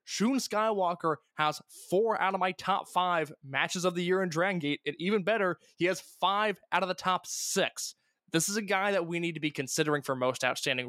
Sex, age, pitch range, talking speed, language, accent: male, 20-39, 150-195 Hz, 220 wpm, English, American